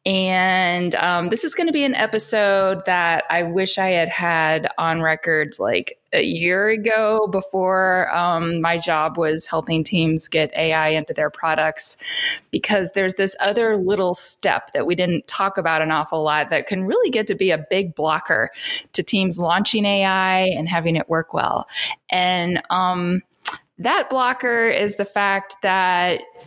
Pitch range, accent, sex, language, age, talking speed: 170-210 Hz, American, female, English, 20-39, 165 wpm